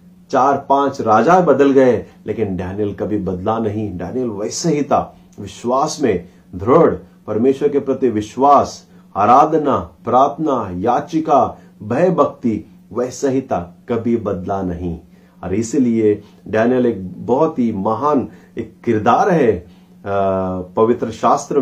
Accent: native